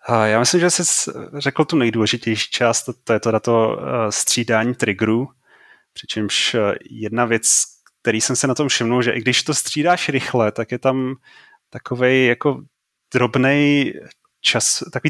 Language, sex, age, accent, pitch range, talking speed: Czech, male, 30-49, native, 115-150 Hz, 150 wpm